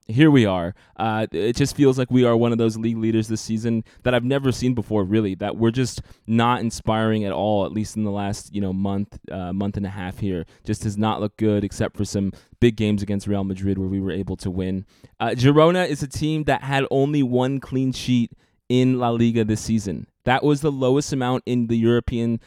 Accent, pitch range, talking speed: American, 100-120 Hz, 230 wpm